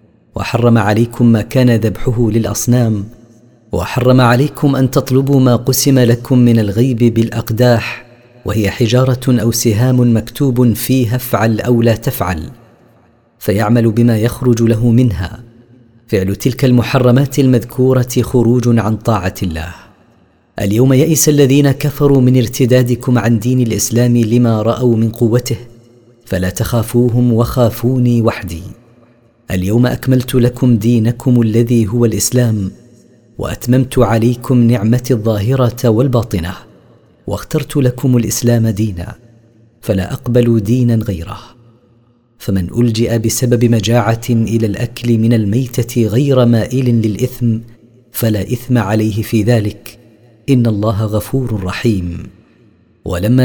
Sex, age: female, 40-59